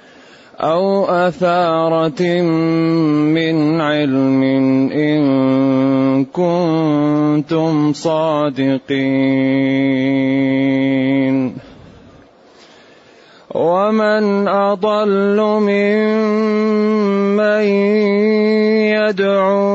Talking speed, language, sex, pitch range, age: 35 wpm, Arabic, male, 150-190 Hz, 30-49